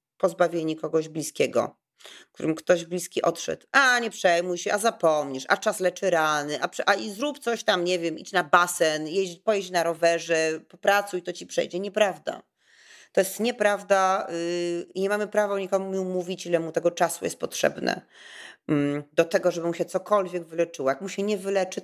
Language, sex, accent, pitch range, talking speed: Polish, female, native, 170-195 Hz, 180 wpm